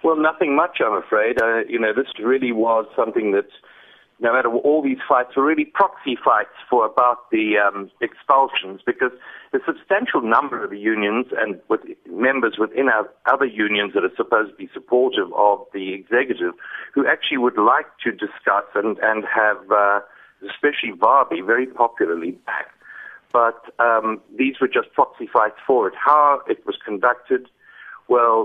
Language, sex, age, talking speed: English, male, 50-69, 170 wpm